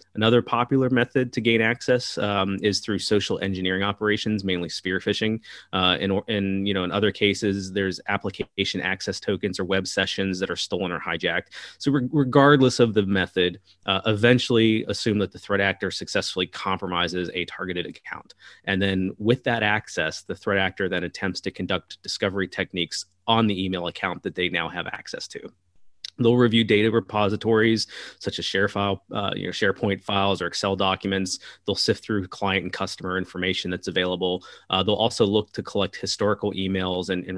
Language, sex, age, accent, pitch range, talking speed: English, male, 30-49, American, 95-105 Hz, 180 wpm